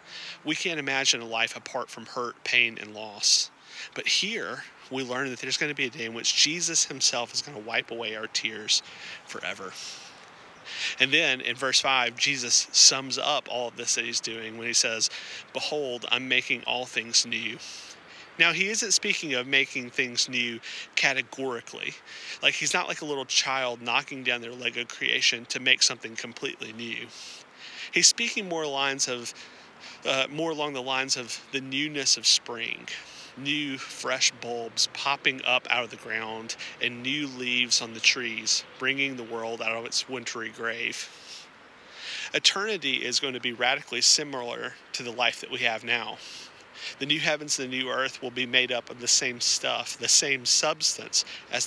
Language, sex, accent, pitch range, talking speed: English, male, American, 120-140 Hz, 180 wpm